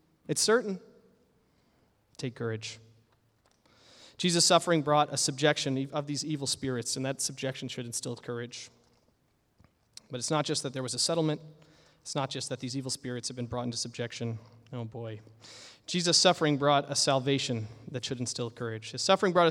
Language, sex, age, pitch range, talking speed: English, male, 30-49, 135-190 Hz, 165 wpm